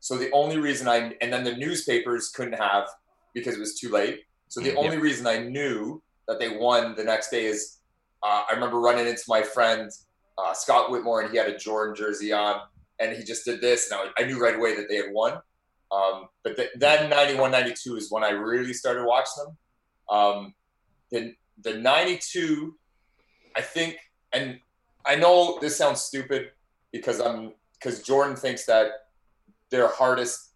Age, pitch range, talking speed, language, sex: 30-49, 105-130 Hz, 180 wpm, English, male